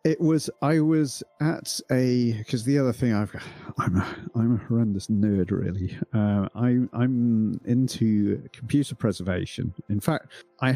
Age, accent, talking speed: 40-59, British, 155 wpm